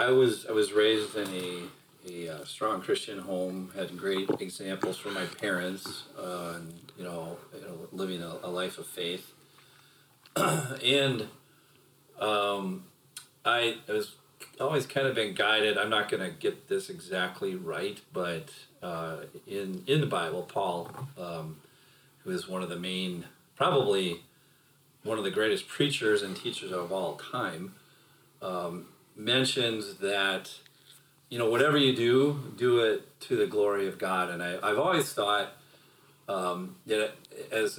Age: 40-59